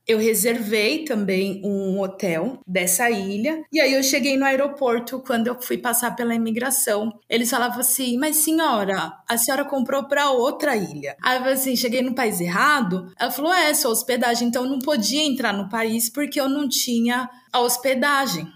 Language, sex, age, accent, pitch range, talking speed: Portuguese, female, 20-39, Brazilian, 210-275 Hz, 180 wpm